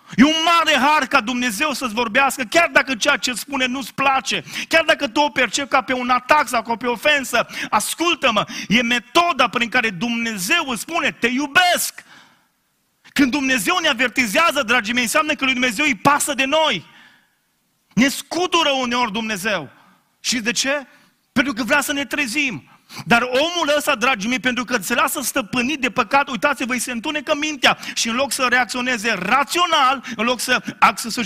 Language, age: Romanian, 30-49